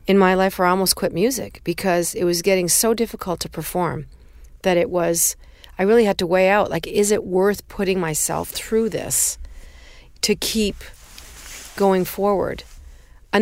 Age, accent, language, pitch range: 40-59, American, English, 160-200 Hz